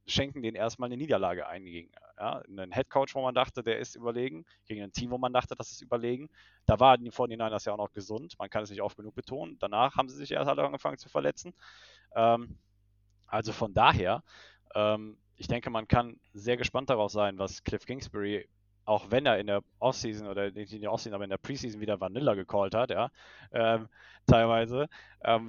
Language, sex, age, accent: German, male, 20-39, German